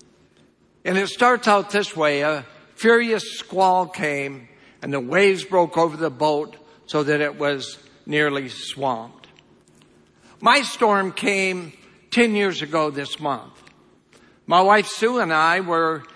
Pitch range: 150-190 Hz